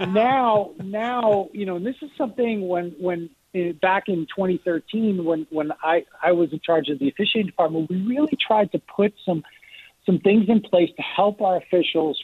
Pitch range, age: 160-200 Hz, 50-69